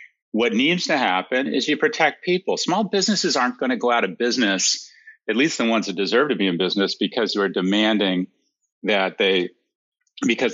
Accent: American